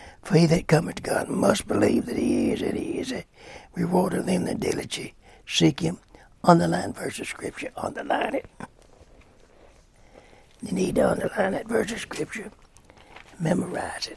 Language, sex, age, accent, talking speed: English, male, 60-79, American, 160 wpm